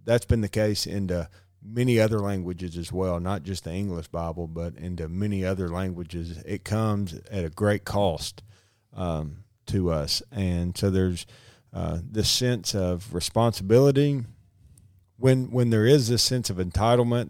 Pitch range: 90-115 Hz